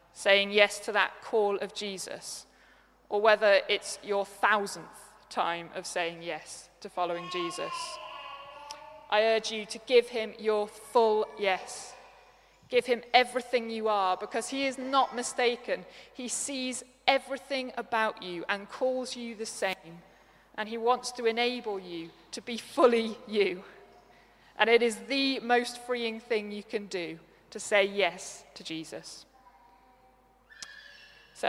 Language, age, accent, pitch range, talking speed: English, 20-39, British, 190-245 Hz, 140 wpm